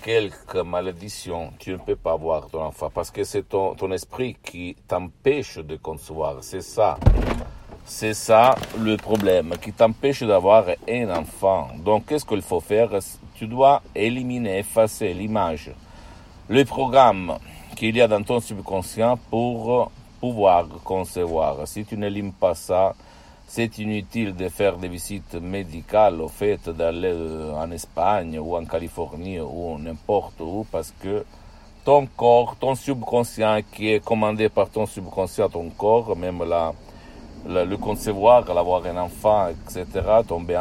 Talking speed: 145 wpm